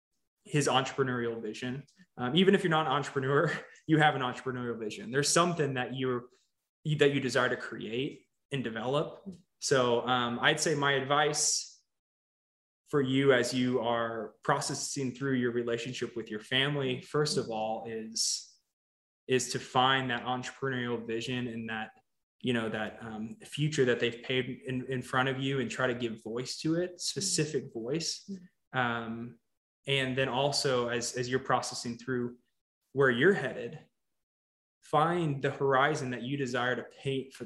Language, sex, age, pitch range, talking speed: English, male, 20-39, 120-145 Hz, 160 wpm